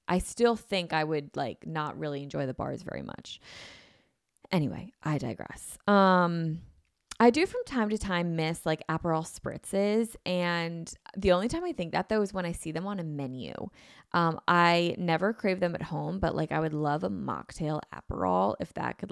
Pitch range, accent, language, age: 160-220 Hz, American, English, 20-39